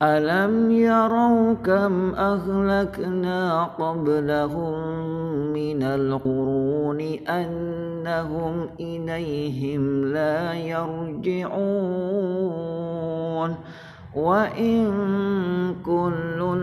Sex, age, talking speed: male, 50-69, 45 wpm